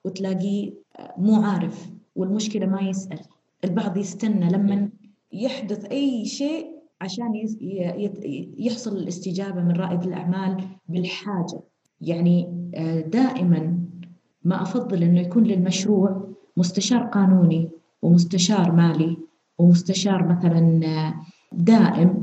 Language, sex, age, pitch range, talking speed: Arabic, female, 30-49, 175-210 Hz, 90 wpm